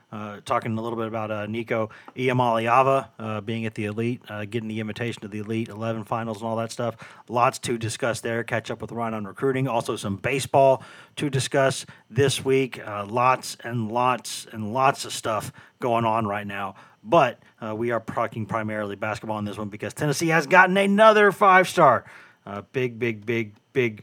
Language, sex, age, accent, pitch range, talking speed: English, male, 30-49, American, 110-135 Hz, 190 wpm